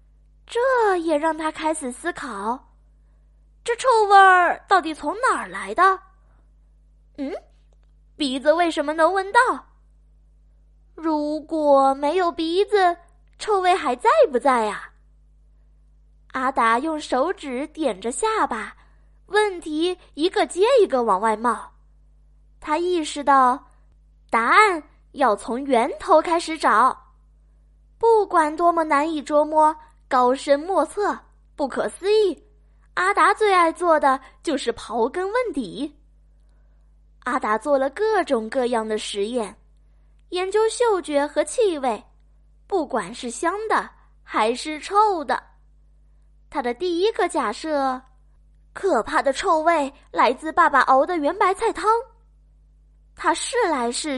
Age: 20-39